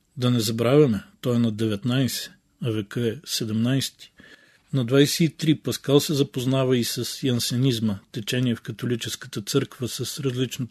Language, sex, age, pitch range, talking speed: Bulgarian, male, 40-59, 110-130 Hz, 140 wpm